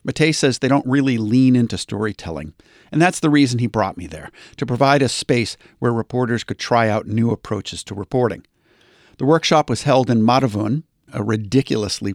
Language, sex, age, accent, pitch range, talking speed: English, male, 50-69, American, 105-135 Hz, 185 wpm